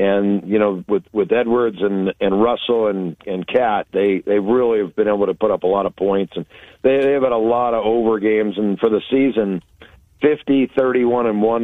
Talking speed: 220 wpm